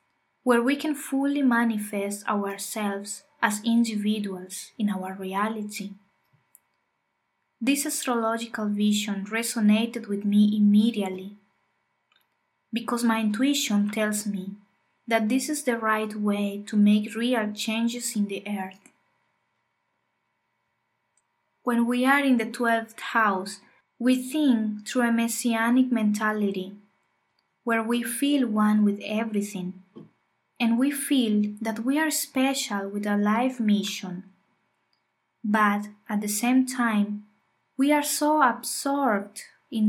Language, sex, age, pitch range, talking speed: English, female, 20-39, 200-245 Hz, 115 wpm